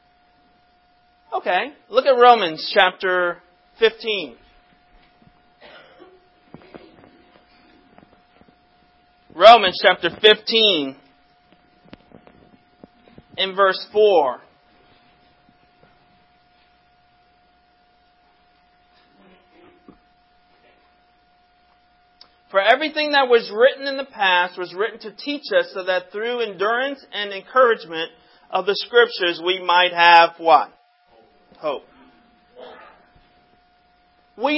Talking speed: 70 wpm